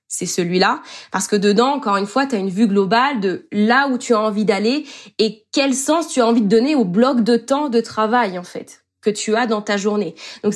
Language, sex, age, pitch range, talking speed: French, female, 20-39, 215-285 Hz, 245 wpm